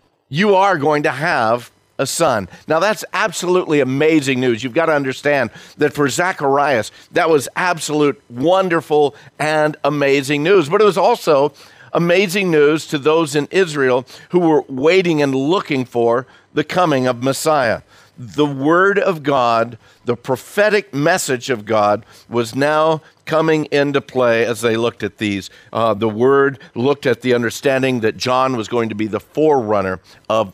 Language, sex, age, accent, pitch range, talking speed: English, male, 50-69, American, 120-160 Hz, 160 wpm